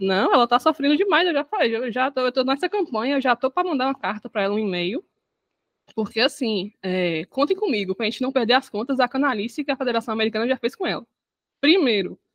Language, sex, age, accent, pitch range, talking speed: Portuguese, female, 20-39, Brazilian, 205-305 Hz, 235 wpm